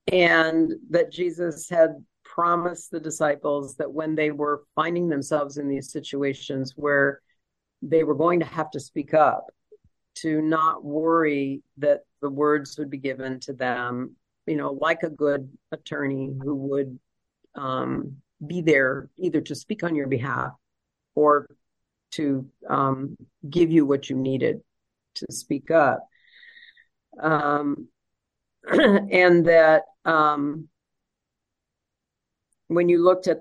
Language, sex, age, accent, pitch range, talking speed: English, female, 50-69, American, 140-160 Hz, 130 wpm